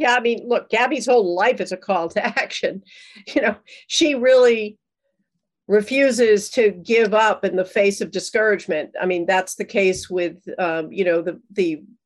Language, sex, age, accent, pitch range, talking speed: English, female, 50-69, American, 195-240 Hz, 180 wpm